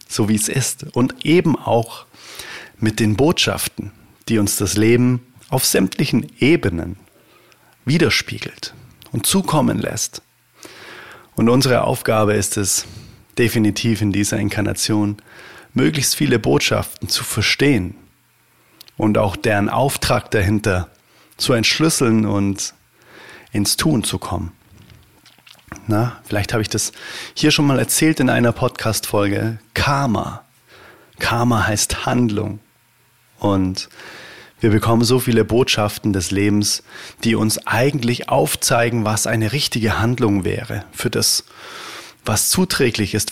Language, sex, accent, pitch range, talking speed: German, male, German, 105-120 Hz, 115 wpm